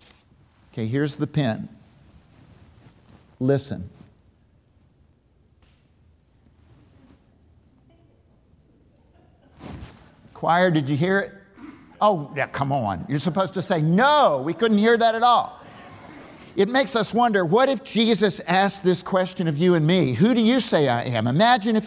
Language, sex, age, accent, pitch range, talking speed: English, male, 50-69, American, 160-215 Hz, 130 wpm